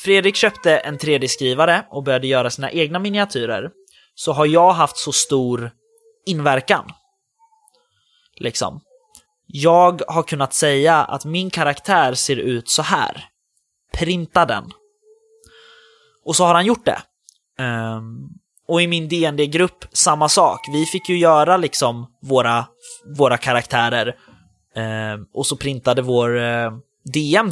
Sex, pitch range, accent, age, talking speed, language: male, 125-185 Hz, native, 20-39, 120 wpm, Swedish